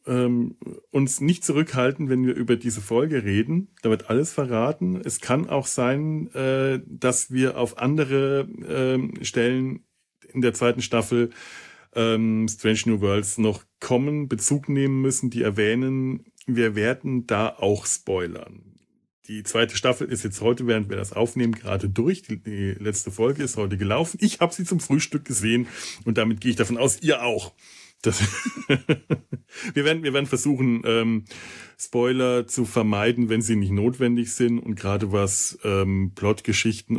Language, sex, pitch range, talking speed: German, male, 105-130 Hz, 155 wpm